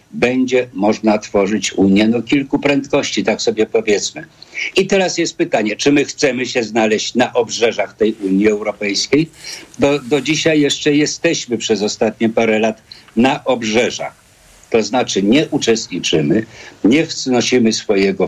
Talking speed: 140 wpm